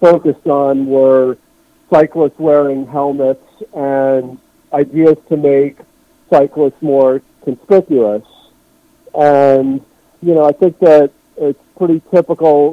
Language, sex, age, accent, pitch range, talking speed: English, male, 50-69, American, 135-160 Hz, 105 wpm